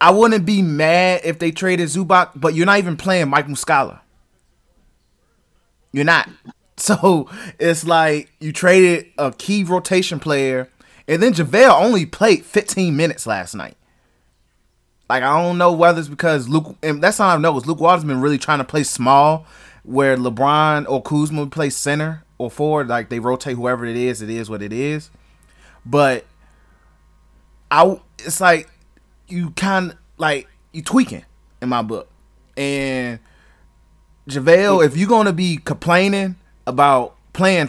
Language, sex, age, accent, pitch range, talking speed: English, male, 20-39, American, 140-185 Hz, 160 wpm